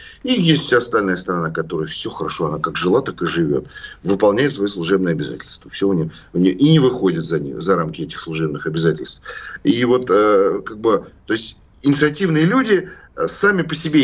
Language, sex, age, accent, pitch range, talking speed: Russian, male, 40-59, native, 120-175 Hz, 160 wpm